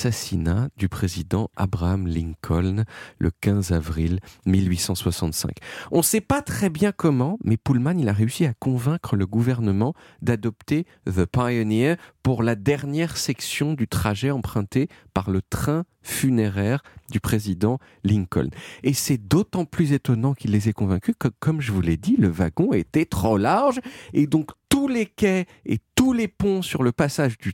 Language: French